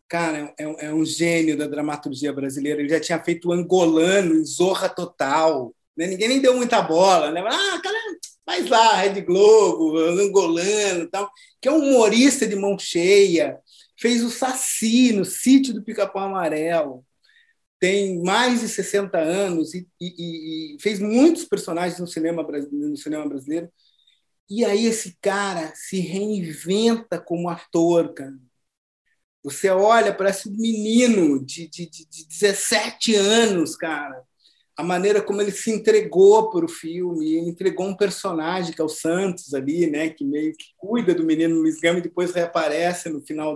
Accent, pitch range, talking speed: Brazilian, 165-225 Hz, 160 wpm